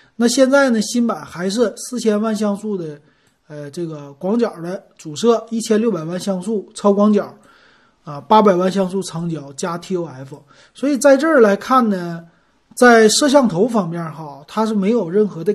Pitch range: 165-220 Hz